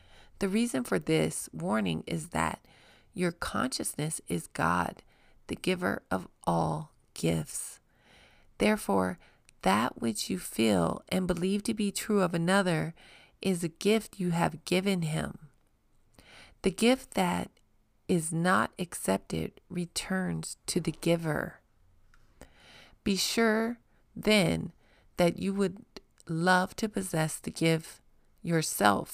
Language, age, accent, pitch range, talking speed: English, 40-59, American, 155-200 Hz, 115 wpm